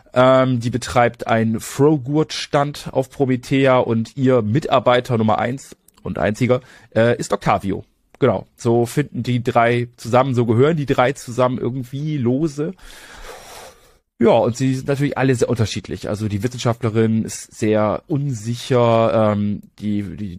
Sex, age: male, 30-49